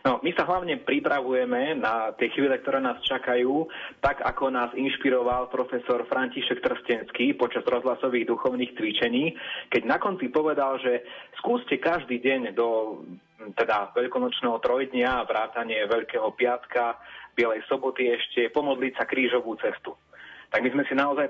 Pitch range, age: 120-135 Hz, 30-49